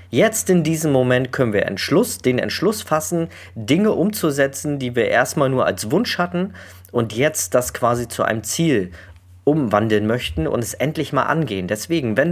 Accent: German